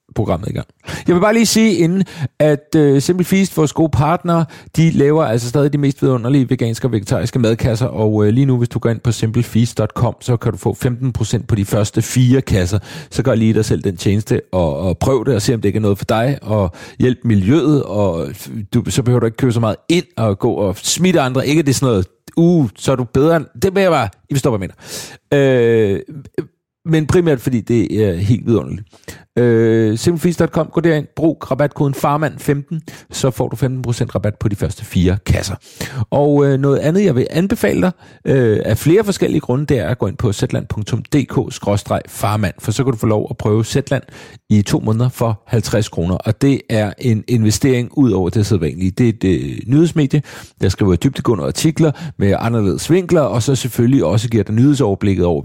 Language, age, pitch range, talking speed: English, 40-59, 110-145 Hz, 210 wpm